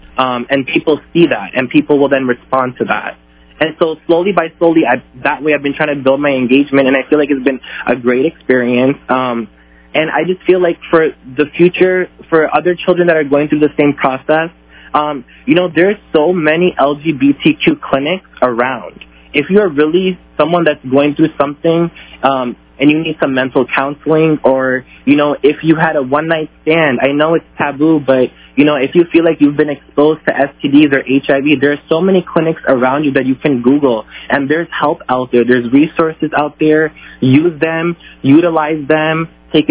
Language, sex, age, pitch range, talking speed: English, male, 20-39, 135-160 Hz, 200 wpm